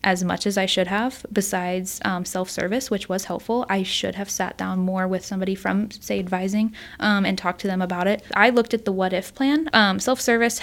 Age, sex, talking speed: 10-29, female, 220 wpm